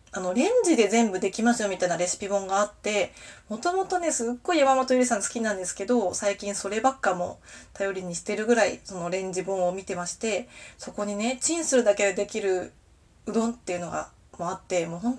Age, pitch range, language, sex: 20-39, 190-250 Hz, Japanese, female